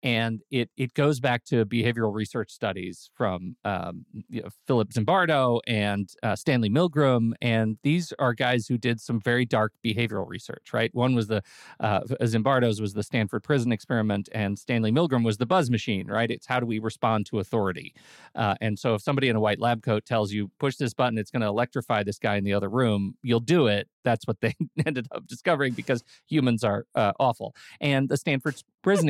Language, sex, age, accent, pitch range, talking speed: English, male, 40-59, American, 110-140 Hz, 205 wpm